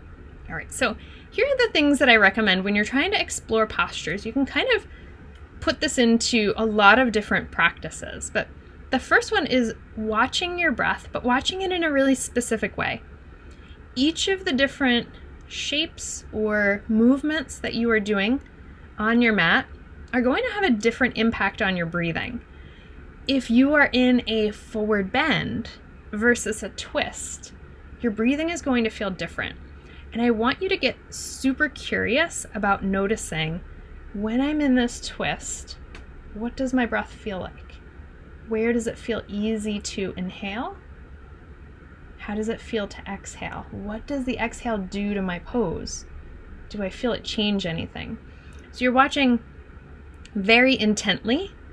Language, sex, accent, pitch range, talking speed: English, female, American, 190-255 Hz, 160 wpm